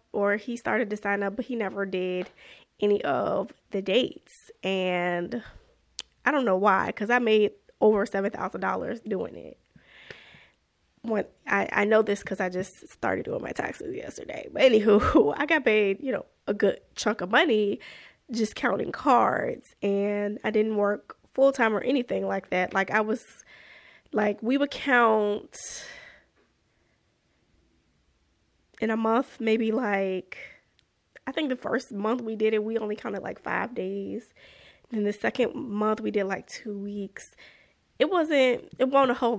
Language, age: English, 10-29